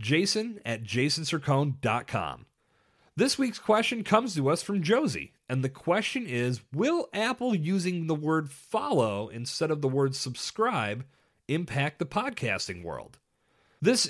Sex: male